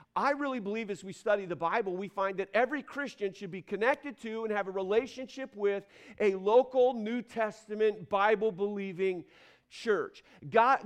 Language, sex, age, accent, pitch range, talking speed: English, male, 50-69, American, 200-250 Hz, 160 wpm